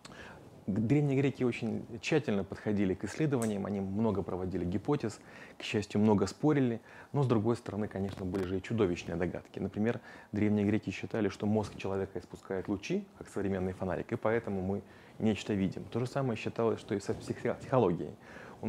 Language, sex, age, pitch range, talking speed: Russian, male, 30-49, 95-115 Hz, 165 wpm